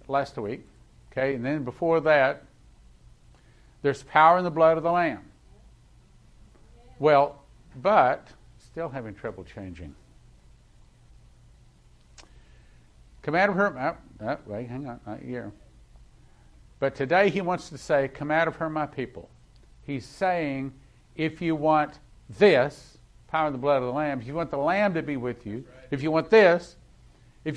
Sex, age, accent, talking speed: male, 50-69, American, 150 wpm